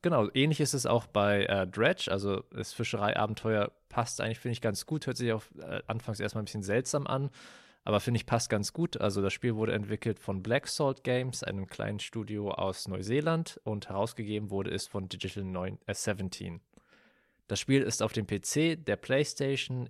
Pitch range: 100-125 Hz